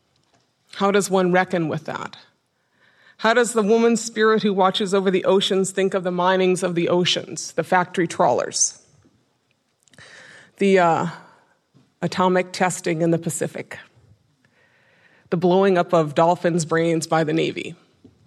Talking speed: 140 wpm